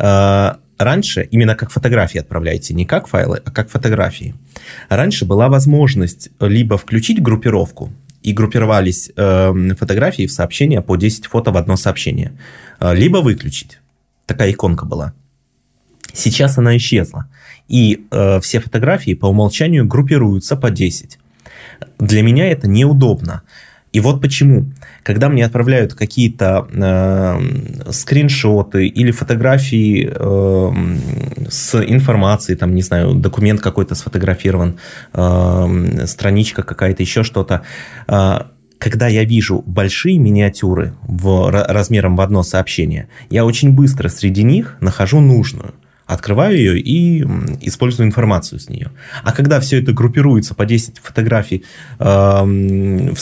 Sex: male